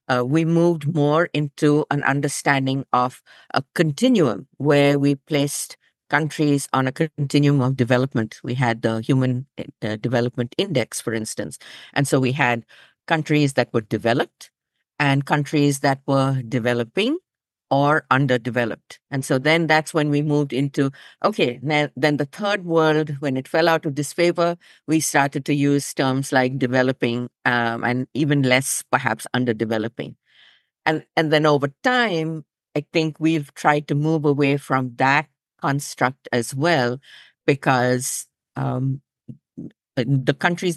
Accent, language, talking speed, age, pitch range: Indian, English, 140 wpm, 50-69, 130-155 Hz